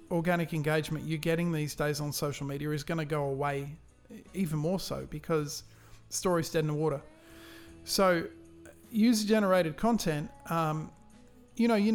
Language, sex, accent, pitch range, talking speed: English, male, Australian, 150-185 Hz, 150 wpm